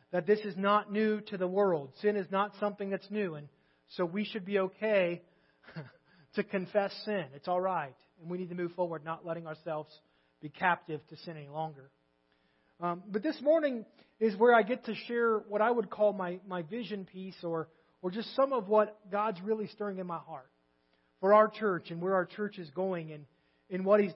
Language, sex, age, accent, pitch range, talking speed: English, male, 30-49, American, 155-210 Hz, 210 wpm